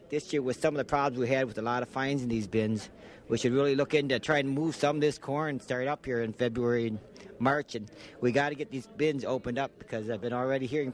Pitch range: 120-140 Hz